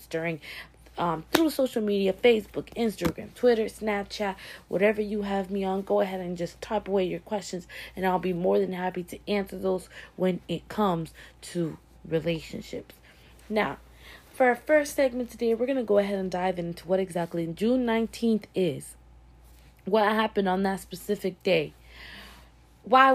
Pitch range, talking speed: 160-215 Hz, 160 wpm